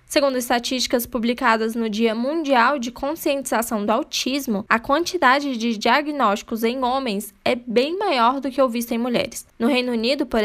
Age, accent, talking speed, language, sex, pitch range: 10-29, Brazilian, 165 wpm, Portuguese, female, 225-275 Hz